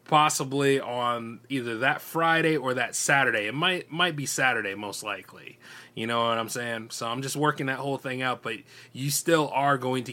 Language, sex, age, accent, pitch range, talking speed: English, male, 30-49, American, 120-145 Hz, 200 wpm